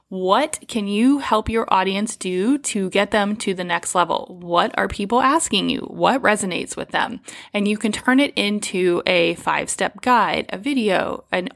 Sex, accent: female, American